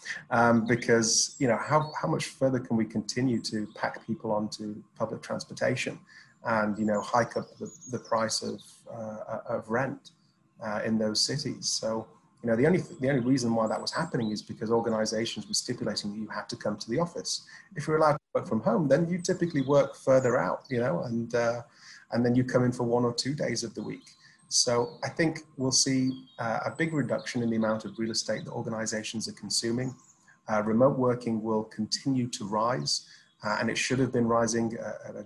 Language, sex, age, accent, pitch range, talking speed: English, male, 30-49, British, 110-135 Hz, 205 wpm